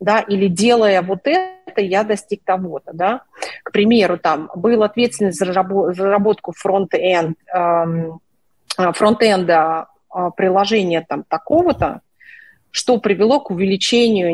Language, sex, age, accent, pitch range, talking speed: Russian, female, 30-49, native, 175-220 Hz, 115 wpm